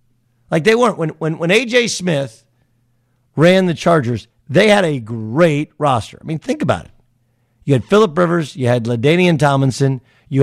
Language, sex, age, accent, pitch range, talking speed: English, male, 50-69, American, 125-160 Hz, 175 wpm